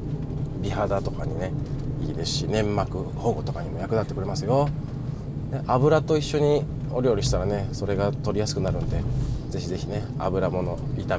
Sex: male